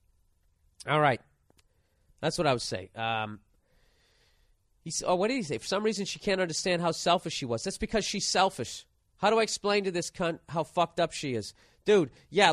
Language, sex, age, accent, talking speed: English, male, 40-59, American, 195 wpm